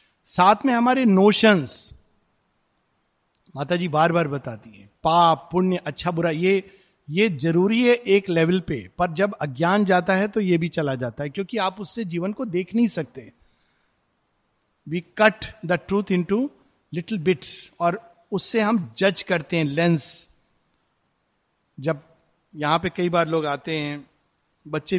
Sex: male